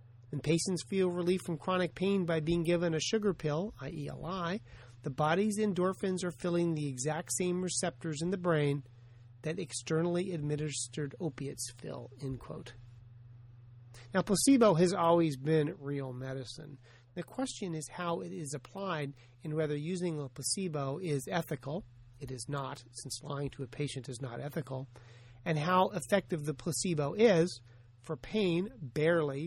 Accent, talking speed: American, 155 wpm